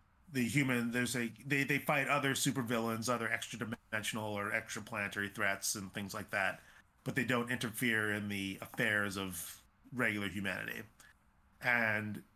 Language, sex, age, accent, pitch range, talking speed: English, male, 30-49, American, 95-115 Hz, 150 wpm